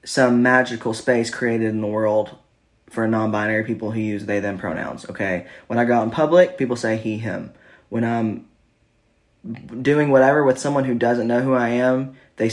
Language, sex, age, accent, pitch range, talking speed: English, male, 20-39, American, 110-125 Hz, 185 wpm